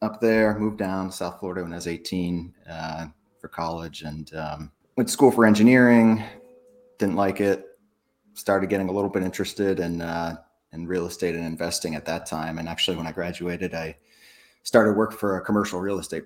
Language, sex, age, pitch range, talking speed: English, male, 30-49, 80-100 Hz, 195 wpm